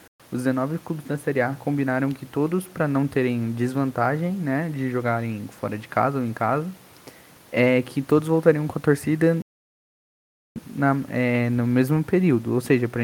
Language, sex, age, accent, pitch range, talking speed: Portuguese, male, 20-39, Brazilian, 110-135 Hz, 160 wpm